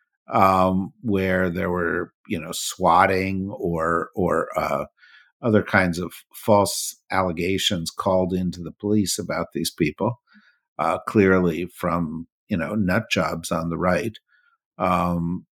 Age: 50-69